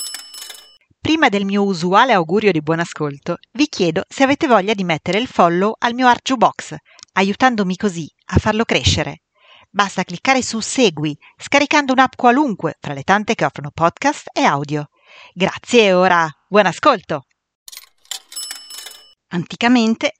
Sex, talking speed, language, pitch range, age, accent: female, 135 wpm, Italian, 160-240 Hz, 40-59, native